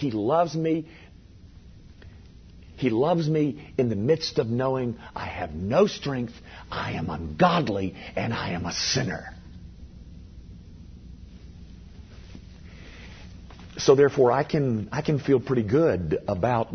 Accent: American